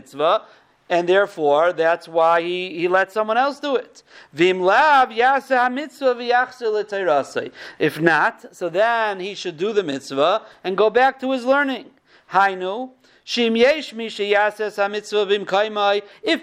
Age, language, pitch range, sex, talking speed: 40-59, English, 200-255 Hz, male, 100 wpm